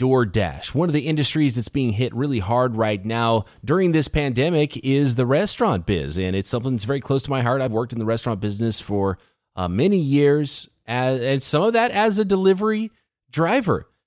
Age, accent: 30-49, American